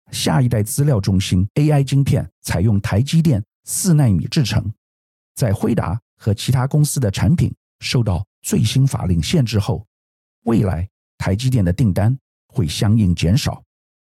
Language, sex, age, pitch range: Chinese, male, 50-69, 90-135 Hz